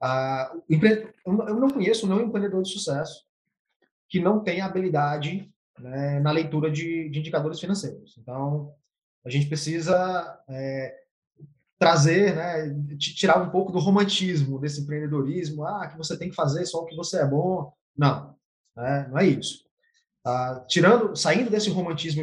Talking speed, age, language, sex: 150 wpm, 20-39, English, male